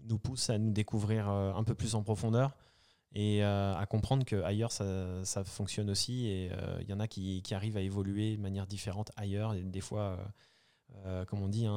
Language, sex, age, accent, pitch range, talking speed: French, male, 20-39, French, 100-115 Hz, 195 wpm